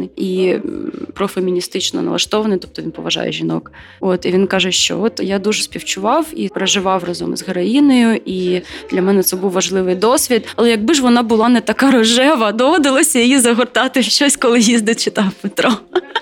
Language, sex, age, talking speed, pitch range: Ukrainian, female, 20-39, 165 wpm, 185-240 Hz